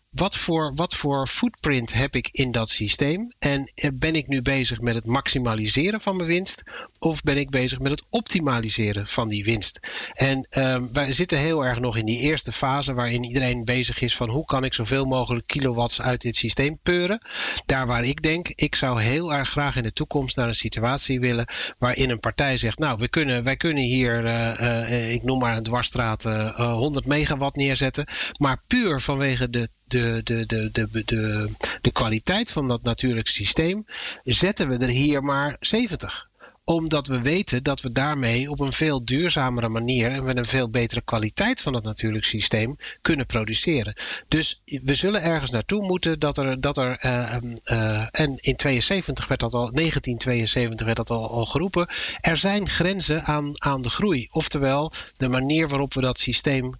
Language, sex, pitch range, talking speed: Dutch, male, 120-150 Hz, 190 wpm